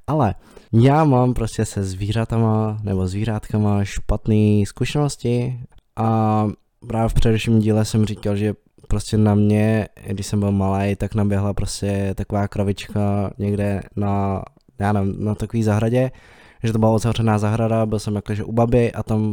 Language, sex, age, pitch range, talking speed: Czech, male, 20-39, 105-110 Hz, 150 wpm